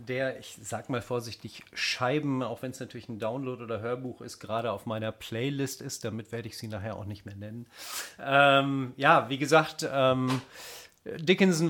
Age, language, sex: 40-59, German, male